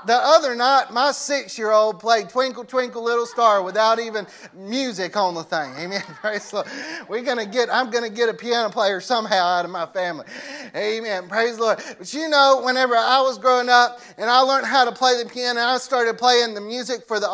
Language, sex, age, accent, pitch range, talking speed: English, male, 30-49, American, 225-270 Hz, 210 wpm